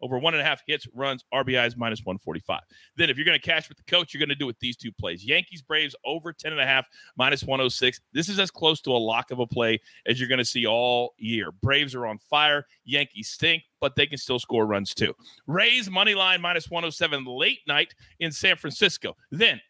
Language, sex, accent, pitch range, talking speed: English, male, American, 125-190 Hz, 240 wpm